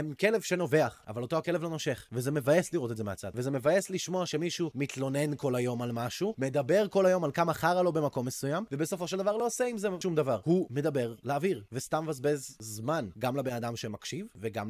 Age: 20-39